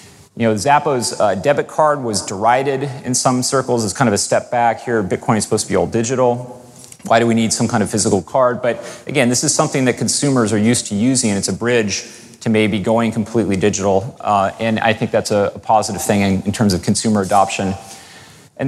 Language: English